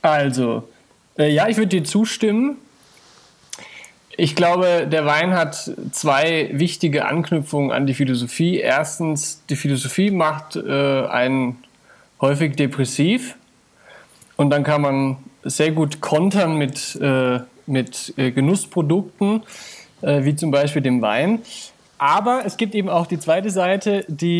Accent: German